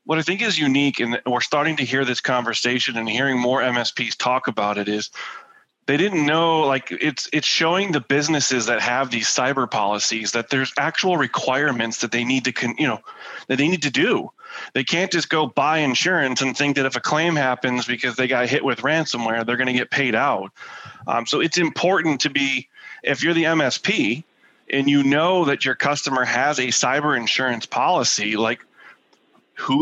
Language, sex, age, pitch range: English, male, 30-49, 130-160 Hz